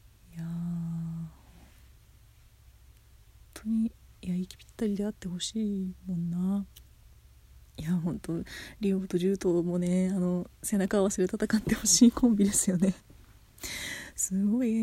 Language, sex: Japanese, female